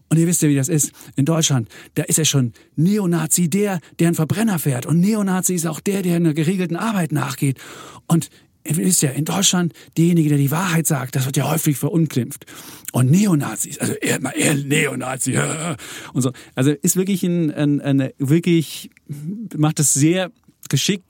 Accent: German